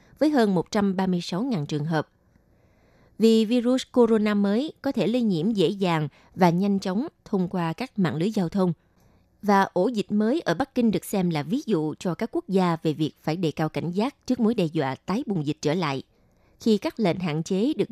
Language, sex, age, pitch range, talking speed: Vietnamese, female, 20-39, 165-230 Hz, 210 wpm